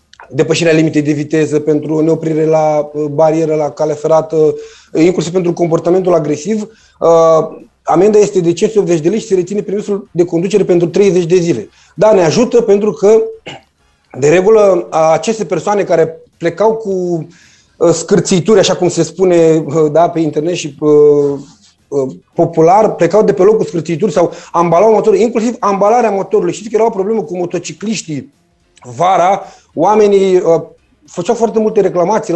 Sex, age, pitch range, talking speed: male, 30-49, 160-215 Hz, 145 wpm